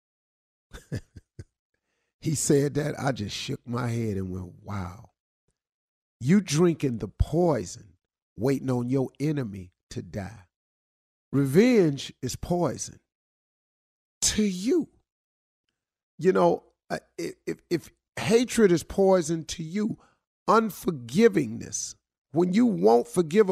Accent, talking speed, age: American, 105 wpm, 50-69